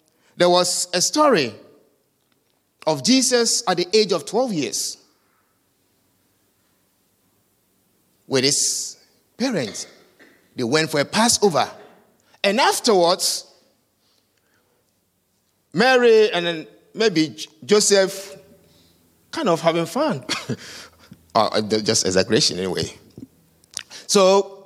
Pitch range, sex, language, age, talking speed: 160-260 Hz, male, English, 50-69, 85 wpm